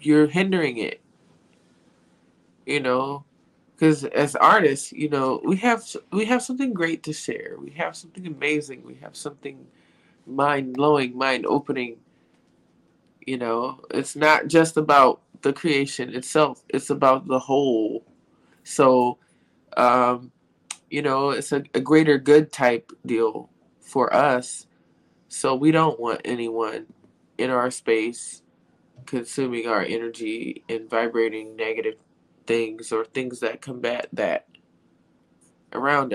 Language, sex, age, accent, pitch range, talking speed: English, male, 20-39, American, 115-155 Hz, 125 wpm